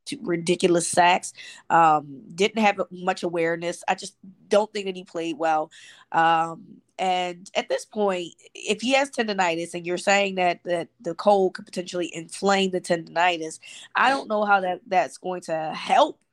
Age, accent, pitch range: 20-39, American, 175-210 Hz